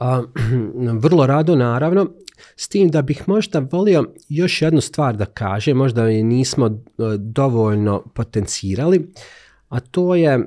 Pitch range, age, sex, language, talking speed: 110-135 Hz, 40-59, male, Croatian, 125 wpm